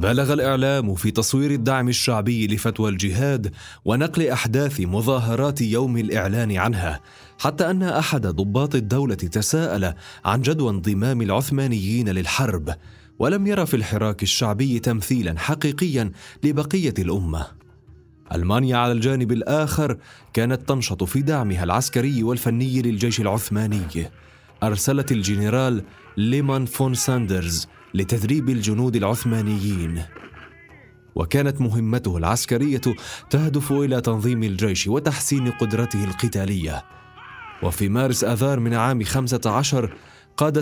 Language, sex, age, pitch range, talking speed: Arabic, male, 30-49, 100-135 Hz, 105 wpm